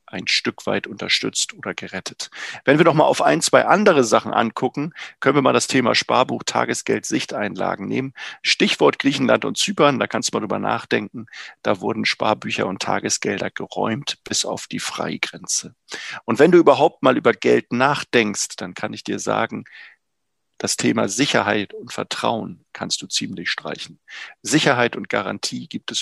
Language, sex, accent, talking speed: German, male, German, 165 wpm